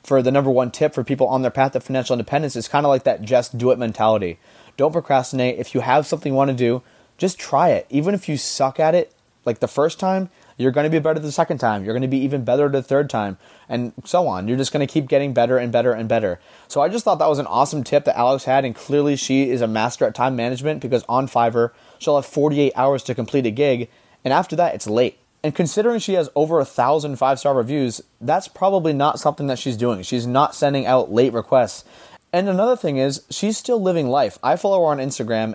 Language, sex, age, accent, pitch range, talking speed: English, male, 20-39, American, 120-150 Hz, 250 wpm